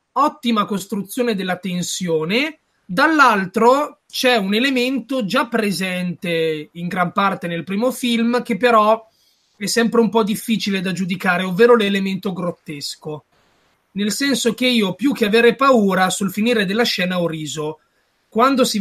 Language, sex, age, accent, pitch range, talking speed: Italian, male, 30-49, native, 185-235 Hz, 140 wpm